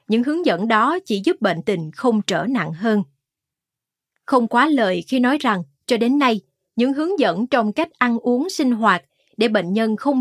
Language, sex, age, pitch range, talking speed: Vietnamese, female, 20-39, 185-255 Hz, 200 wpm